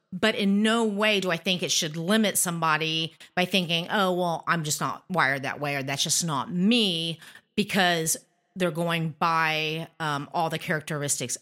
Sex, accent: female, American